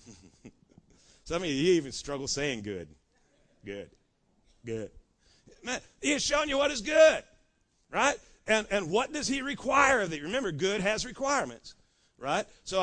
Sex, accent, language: male, American, English